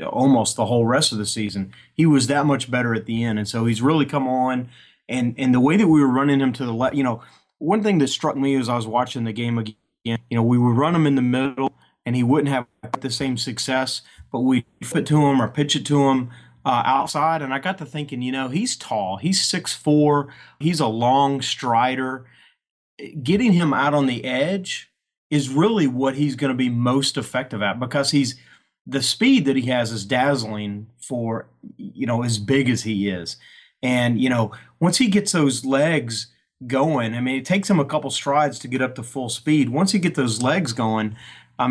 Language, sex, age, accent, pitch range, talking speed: English, male, 30-49, American, 120-150 Hz, 220 wpm